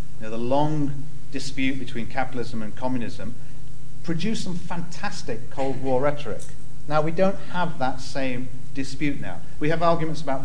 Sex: male